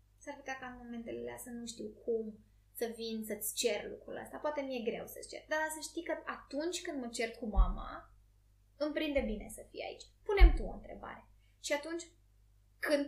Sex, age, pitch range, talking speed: female, 20-39, 205-295 Hz, 195 wpm